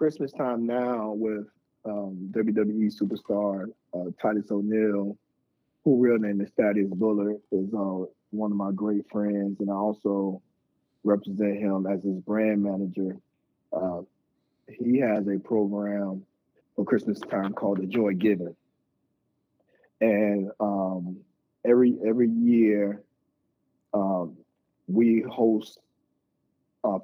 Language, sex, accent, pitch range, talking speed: English, male, American, 100-110 Hz, 120 wpm